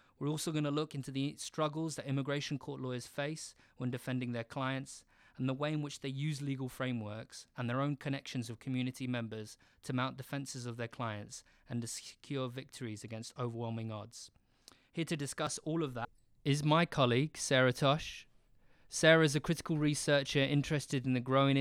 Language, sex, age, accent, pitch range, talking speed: English, male, 20-39, British, 125-140 Hz, 185 wpm